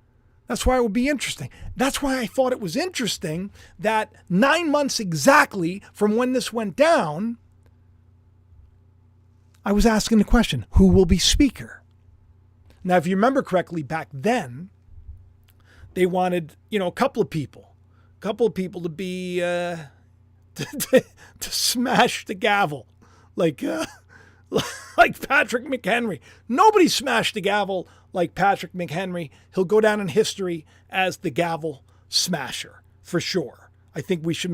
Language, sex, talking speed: English, male, 150 wpm